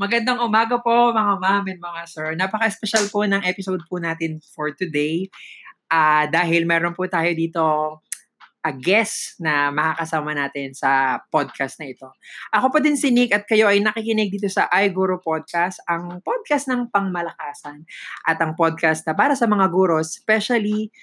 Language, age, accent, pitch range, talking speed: English, 20-39, Filipino, 155-200 Hz, 165 wpm